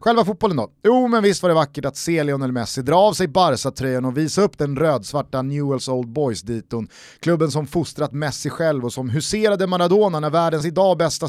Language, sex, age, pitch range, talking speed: Swedish, male, 30-49, 130-190 Hz, 215 wpm